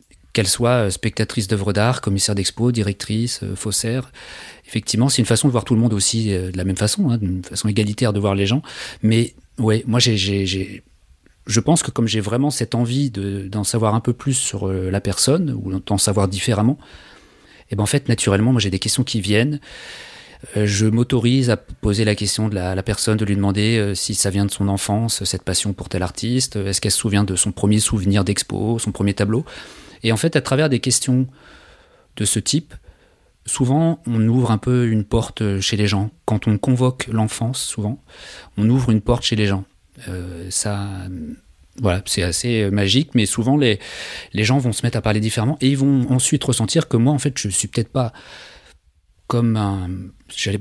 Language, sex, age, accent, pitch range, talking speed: French, male, 30-49, French, 100-125 Hz, 200 wpm